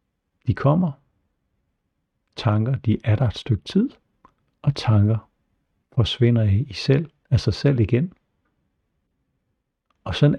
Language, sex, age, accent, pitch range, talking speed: Danish, male, 60-79, native, 105-130 Hz, 105 wpm